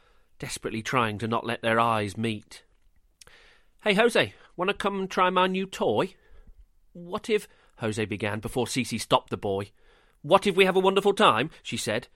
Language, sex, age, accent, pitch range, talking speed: English, male, 40-59, British, 110-180 Hz, 180 wpm